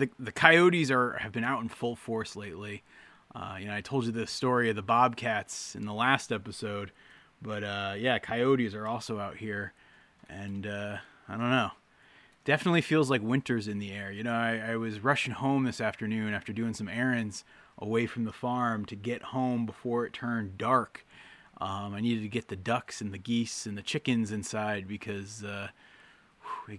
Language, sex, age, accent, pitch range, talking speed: English, male, 20-39, American, 105-125 Hz, 195 wpm